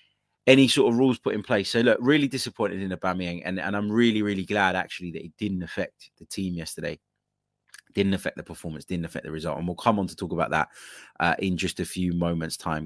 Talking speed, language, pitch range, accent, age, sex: 235 wpm, English, 85-105 Hz, British, 20-39, male